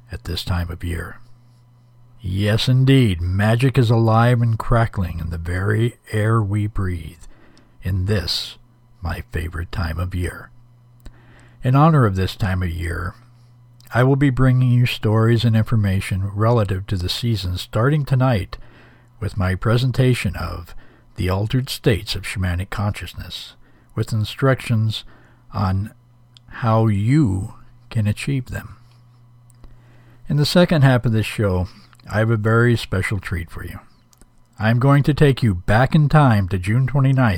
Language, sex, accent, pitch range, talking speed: English, male, American, 100-125 Hz, 145 wpm